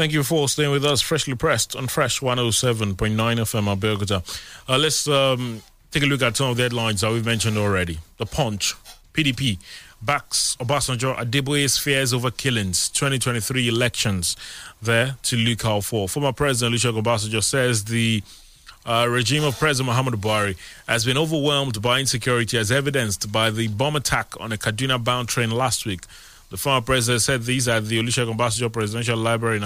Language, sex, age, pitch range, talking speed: English, male, 30-49, 110-135 Hz, 170 wpm